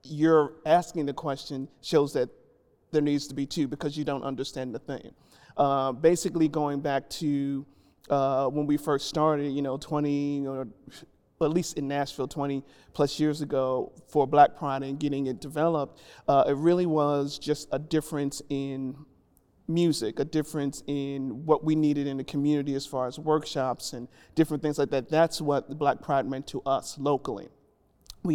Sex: male